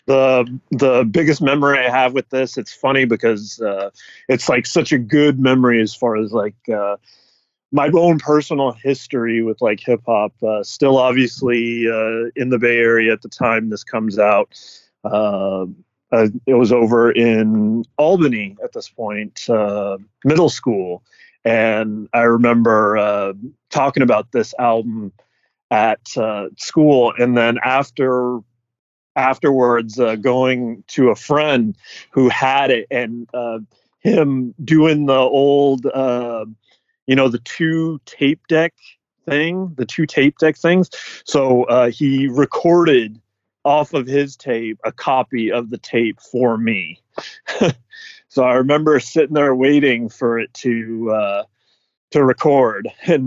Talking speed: 145 wpm